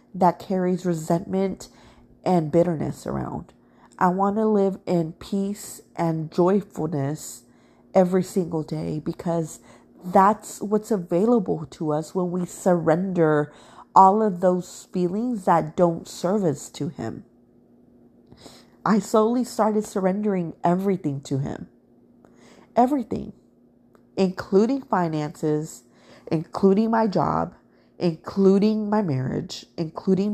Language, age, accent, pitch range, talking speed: English, 30-49, American, 160-200 Hz, 105 wpm